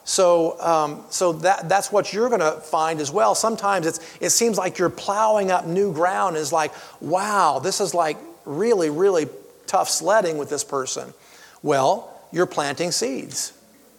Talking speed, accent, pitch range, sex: 165 wpm, American, 165-210 Hz, male